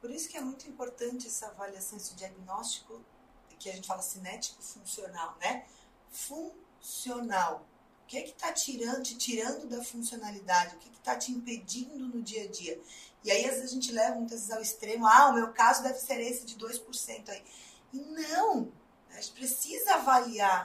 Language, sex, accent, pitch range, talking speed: Portuguese, female, Brazilian, 220-270 Hz, 190 wpm